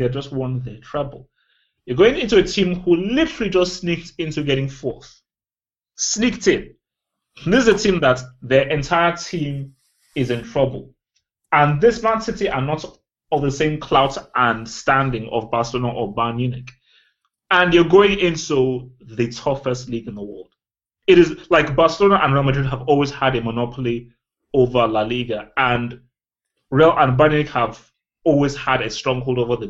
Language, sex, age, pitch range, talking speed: English, male, 30-49, 125-160 Hz, 170 wpm